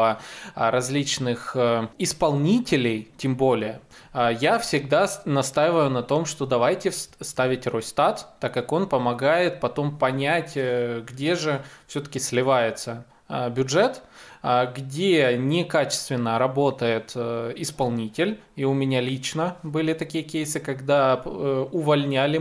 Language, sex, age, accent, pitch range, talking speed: Russian, male, 20-39, native, 125-155 Hz, 100 wpm